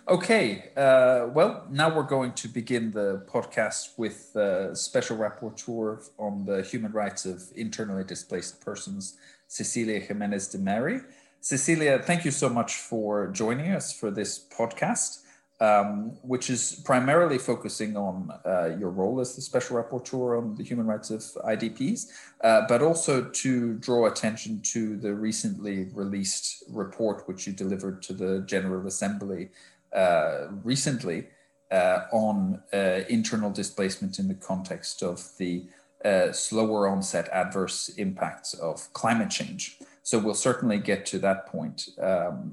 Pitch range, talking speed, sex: 100-130 Hz, 145 wpm, male